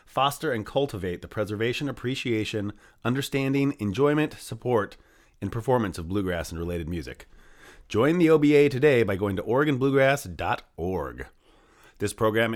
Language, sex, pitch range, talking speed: English, male, 95-125 Hz, 125 wpm